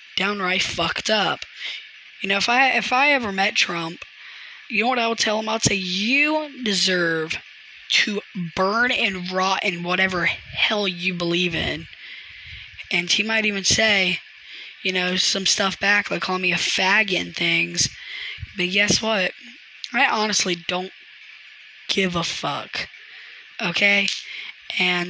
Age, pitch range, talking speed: 10-29, 175-215 Hz, 145 wpm